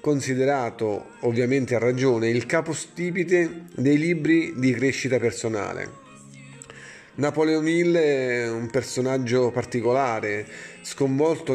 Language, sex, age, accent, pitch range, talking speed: Italian, male, 30-49, native, 115-140 Hz, 95 wpm